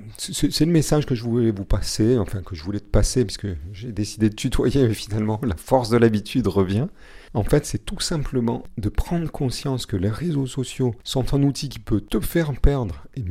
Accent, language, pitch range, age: French, French, 105-145 Hz, 40-59